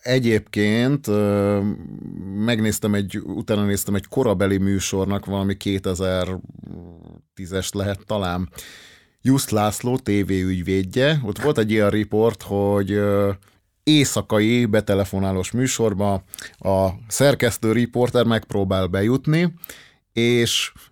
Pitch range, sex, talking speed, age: 100-125 Hz, male, 90 wpm, 30-49